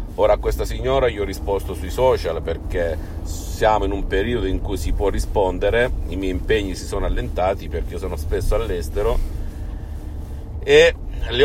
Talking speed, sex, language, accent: 170 wpm, male, Italian, native